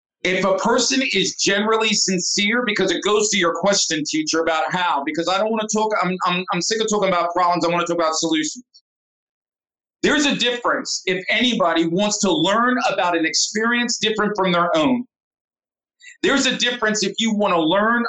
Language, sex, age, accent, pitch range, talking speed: English, male, 40-59, American, 170-215 Hz, 190 wpm